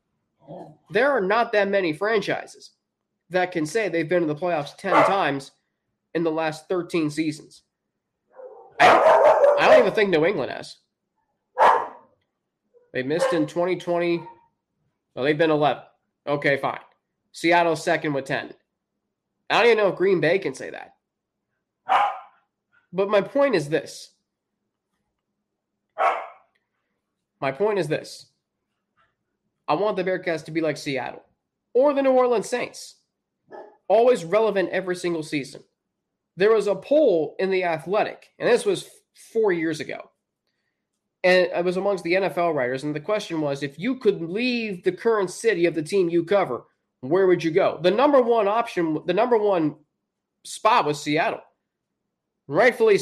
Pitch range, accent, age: 165-225 Hz, American, 20-39